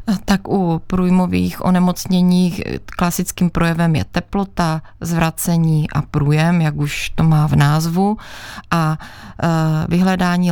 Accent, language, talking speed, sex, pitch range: native, Czech, 110 wpm, female, 155-175 Hz